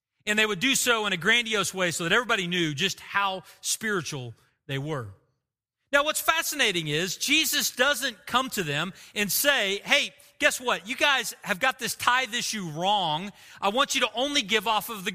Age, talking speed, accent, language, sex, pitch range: 40-59, 195 wpm, American, English, male, 150-250 Hz